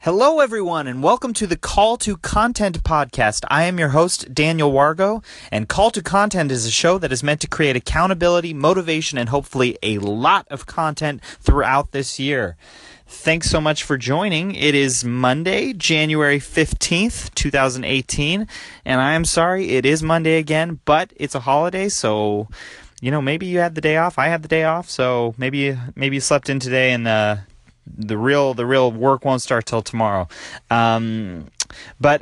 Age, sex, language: 30-49, male, English